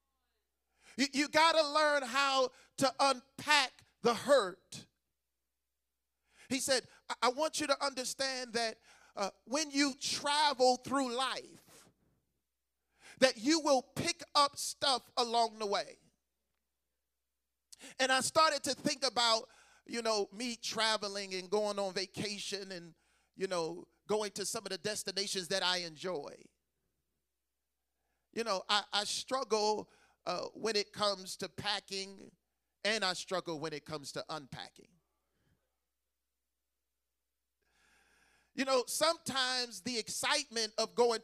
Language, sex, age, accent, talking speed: English, male, 40-59, American, 125 wpm